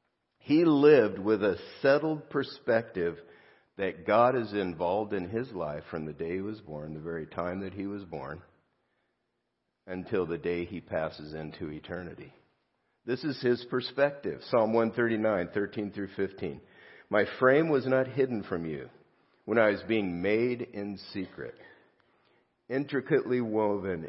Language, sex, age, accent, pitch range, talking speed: English, male, 50-69, American, 90-120 Hz, 140 wpm